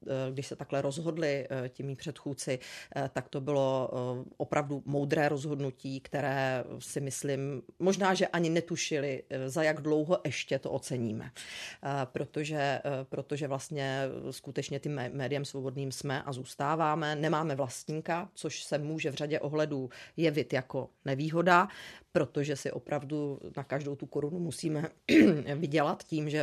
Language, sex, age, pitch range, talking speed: Czech, female, 40-59, 140-155 Hz, 130 wpm